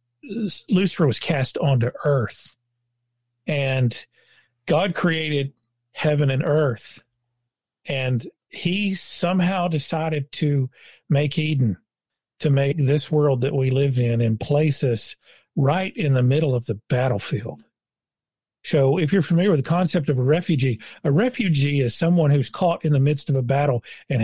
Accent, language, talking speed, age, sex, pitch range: American, English, 145 wpm, 50-69, male, 125-155 Hz